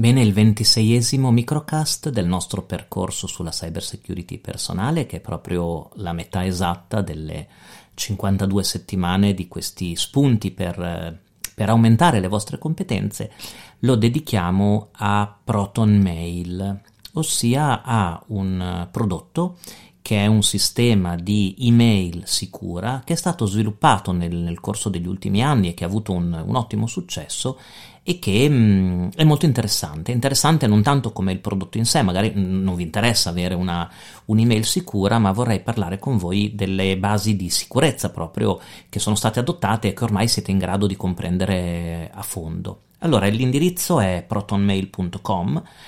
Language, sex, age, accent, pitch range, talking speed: Italian, male, 40-59, native, 95-115 Hz, 150 wpm